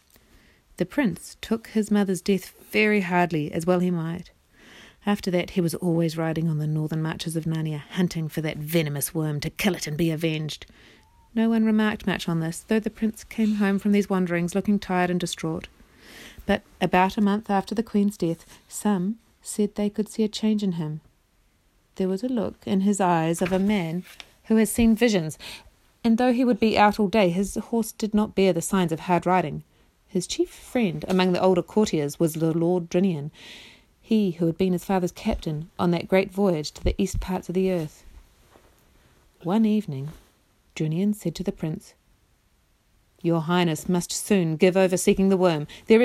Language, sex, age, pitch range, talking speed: English, female, 40-59, 165-210 Hz, 195 wpm